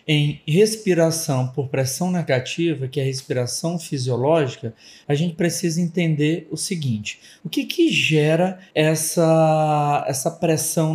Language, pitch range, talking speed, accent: Portuguese, 145-195 Hz, 125 wpm, Brazilian